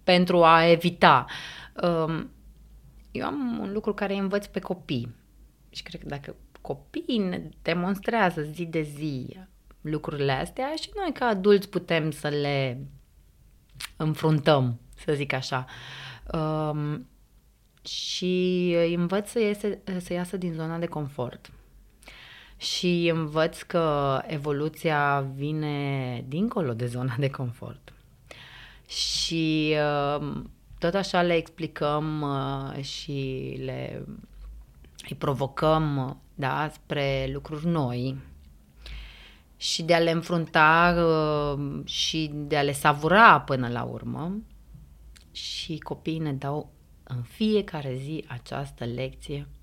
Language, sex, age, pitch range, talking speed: Romanian, female, 30-49, 135-175 Hz, 105 wpm